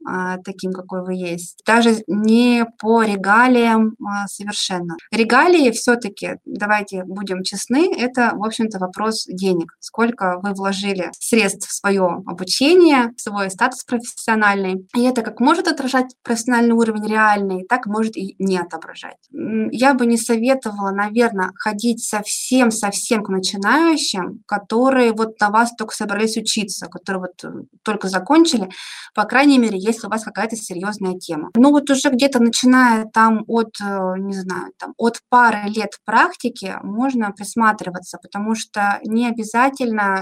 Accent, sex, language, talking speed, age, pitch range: native, female, Russian, 140 wpm, 20-39, 195-230 Hz